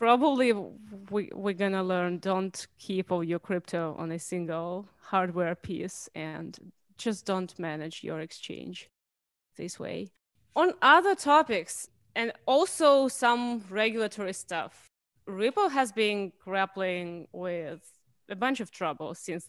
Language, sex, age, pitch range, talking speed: English, female, 20-39, 180-230 Hz, 125 wpm